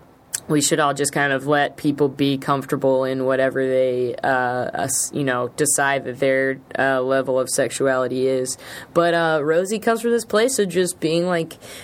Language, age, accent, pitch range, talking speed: English, 20-39, American, 140-180 Hz, 190 wpm